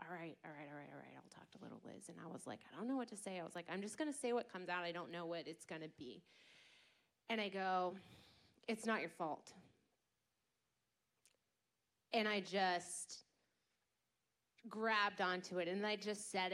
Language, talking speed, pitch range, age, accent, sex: English, 215 wpm, 175-220 Hz, 30-49, American, female